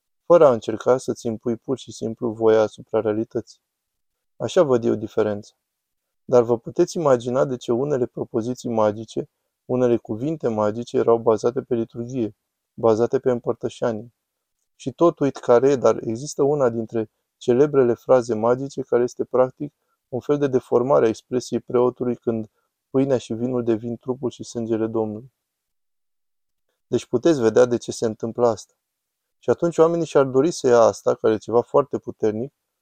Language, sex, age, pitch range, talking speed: Romanian, male, 20-39, 110-130 Hz, 155 wpm